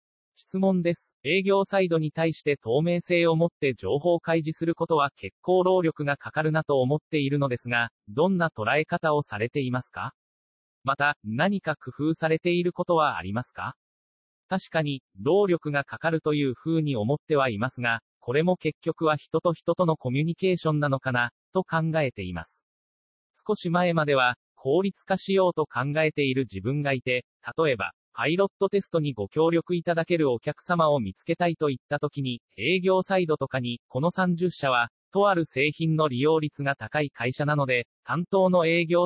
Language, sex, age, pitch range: Japanese, male, 40-59, 130-170 Hz